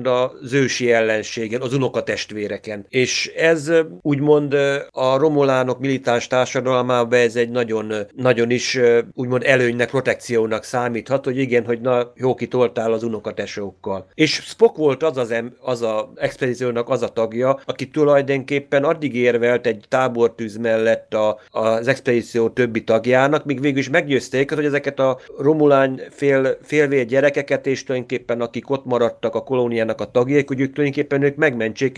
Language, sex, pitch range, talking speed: Hungarian, male, 120-140 Hz, 145 wpm